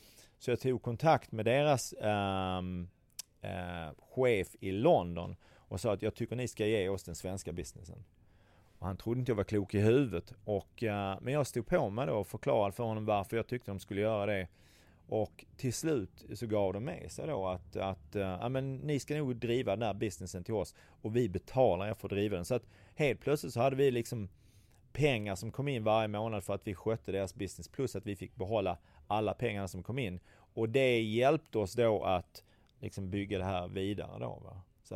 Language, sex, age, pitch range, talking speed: English, male, 30-49, 95-120 Hz, 215 wpm